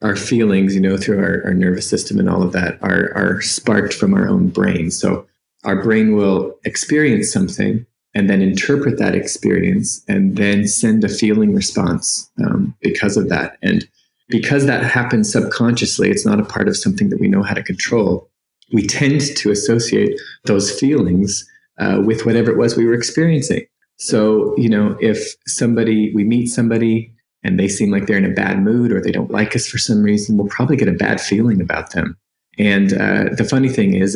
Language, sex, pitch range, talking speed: English, male, 100-145 Hz, 195 wpm